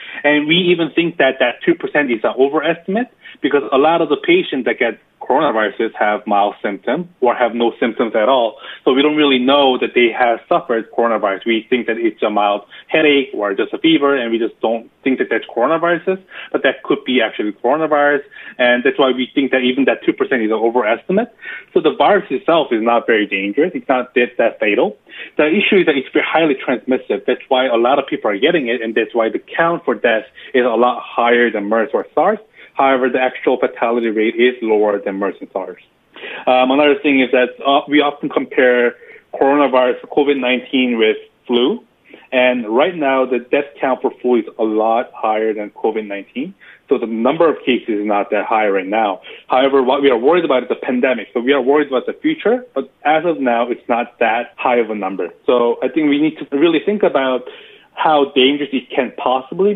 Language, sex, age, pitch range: Korean, male, 30-49, 120-165 Hz